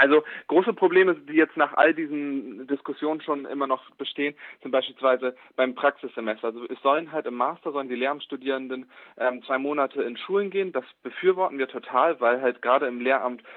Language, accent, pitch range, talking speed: German, German, 120-140 Hz, 180 wpm